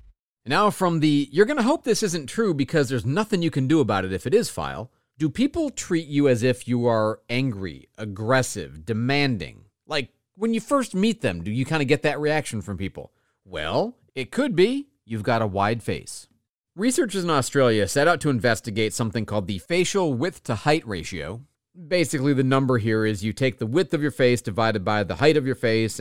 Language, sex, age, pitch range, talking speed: English, male, 40-59, 110-150 Hz, 210 wpm